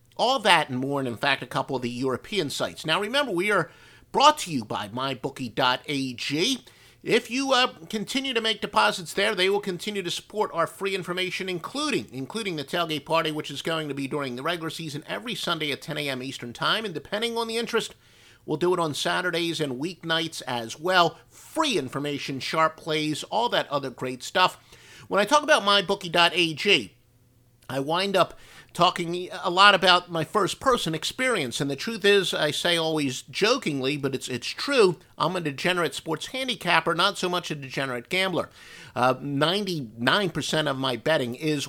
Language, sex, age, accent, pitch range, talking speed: English, male, 50-69, American, 135-190 Hz, 180 wpm